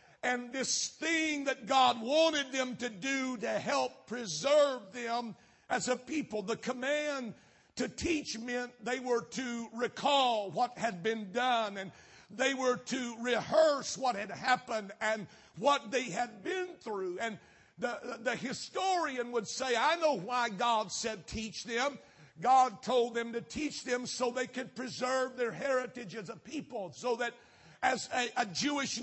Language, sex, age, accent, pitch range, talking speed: English, male, 60-79, American, 230-265 Hz, 160 wpm